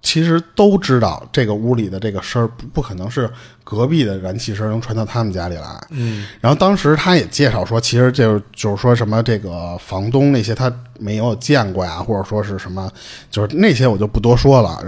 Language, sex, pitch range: Chinese, male, 110-165 Hz